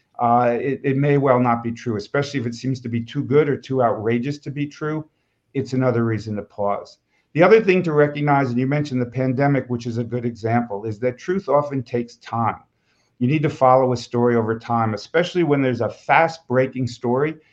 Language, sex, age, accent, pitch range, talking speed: English, male, 50-69, American, 115-140 Hz, 215 wpm